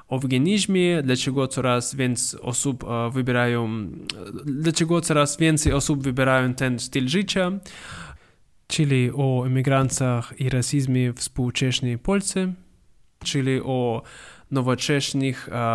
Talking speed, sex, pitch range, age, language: 105 wpm, male, 125-155 Hz, 20-39, English